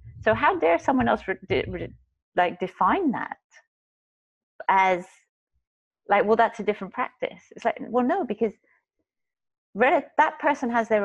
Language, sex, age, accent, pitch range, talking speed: English, female, 30-49, British, 175-230 Hz, 130 wpm